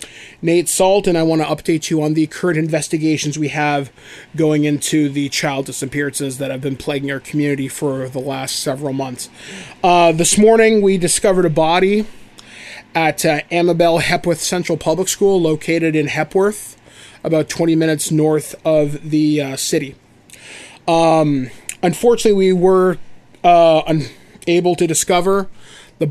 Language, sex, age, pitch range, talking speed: English, male, 30-49, 150-175 Hz, 145 wpm